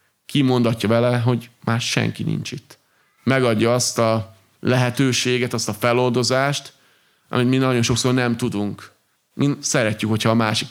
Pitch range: 110-125 Hz